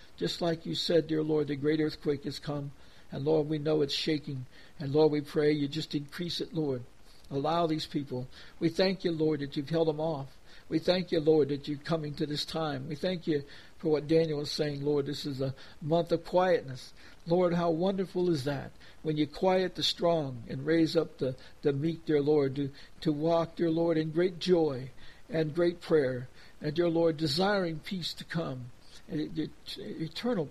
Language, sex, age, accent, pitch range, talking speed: English, male, 60-79, American, 145-165 Hz, 195 wpm